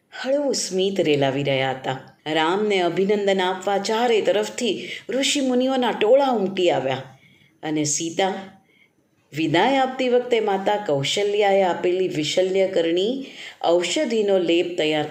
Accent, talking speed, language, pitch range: native, 85 wpm, Gujarati, 170-235 Hz